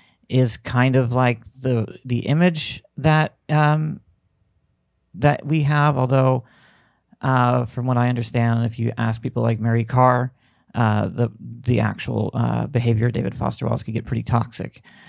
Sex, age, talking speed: male, 40-59, 155 wpm